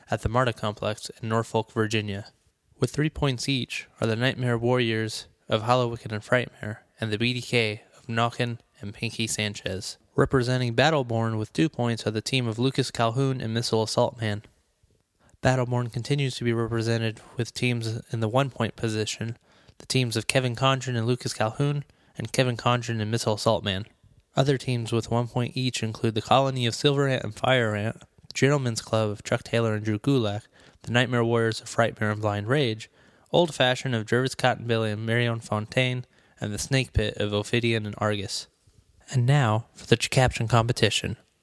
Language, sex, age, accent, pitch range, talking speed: English, male, 20-39, American, 110-130 Hz, 175 wpm